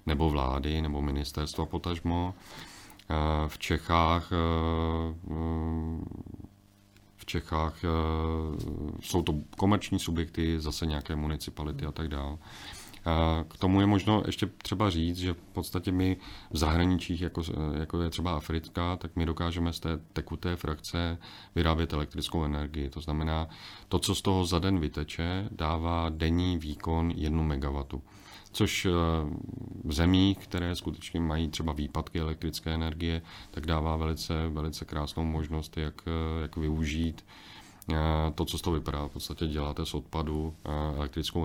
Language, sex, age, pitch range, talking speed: Czech, male, 40-59, 80-90 Hz, 130 wpm